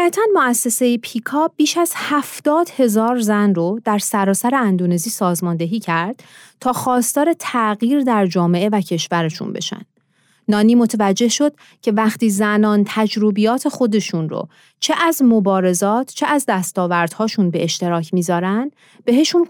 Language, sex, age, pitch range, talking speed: Persian, female, 30-49, 185-250 Hz, 125 wpm